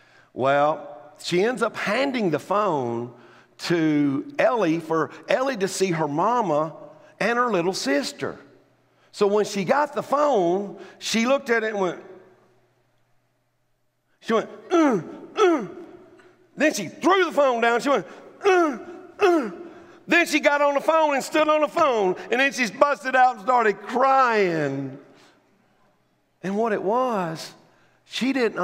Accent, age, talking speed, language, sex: American, 50-69, 145 wpm, English, male